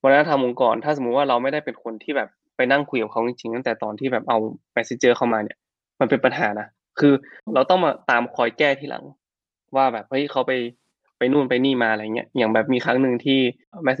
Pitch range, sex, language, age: 115-140 Hz, male, Thai, 20-39